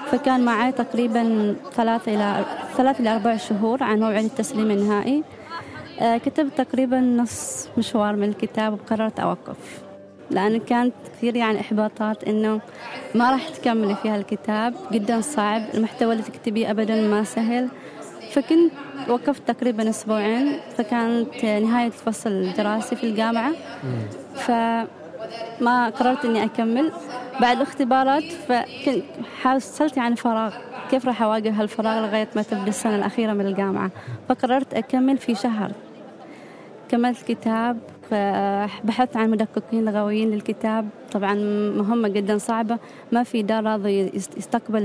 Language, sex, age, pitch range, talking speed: Arabic, female, 20-39, 215-245 Hz, 120 wpm